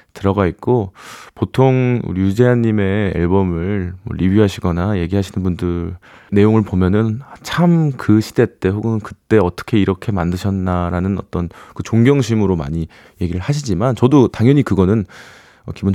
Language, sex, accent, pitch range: Korean, male, native, 90-125 Hz